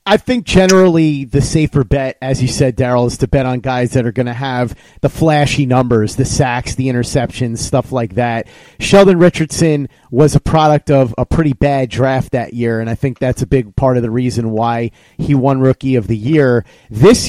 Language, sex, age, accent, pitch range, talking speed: English, male, 30-49, American, 125-150 Hz, 210 wpm